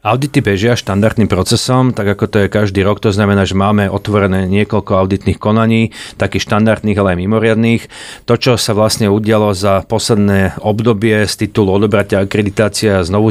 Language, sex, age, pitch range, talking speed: Slovak, male, 40-59, 100-110 Hz, 160 wpm